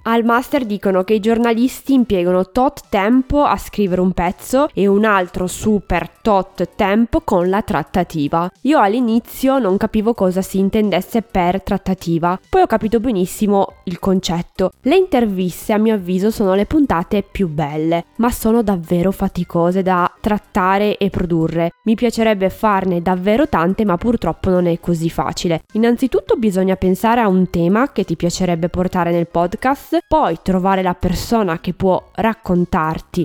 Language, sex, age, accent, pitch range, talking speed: Italian, female, 20-39, native, 180-230 Hz, 155 wpm